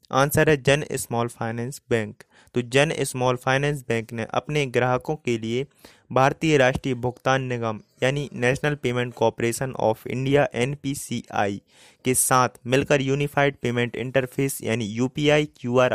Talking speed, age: 135 wpm, 20-39